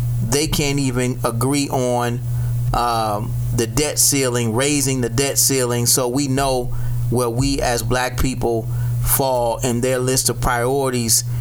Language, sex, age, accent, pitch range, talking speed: English, male, 30-49, American, 120-145 Hz, 140 wpm